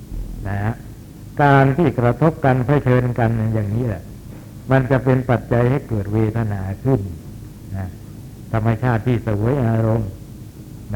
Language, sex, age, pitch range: Thai, male, 60-79, 110-130 Hz